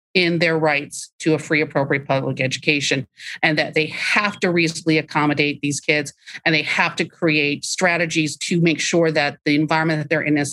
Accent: American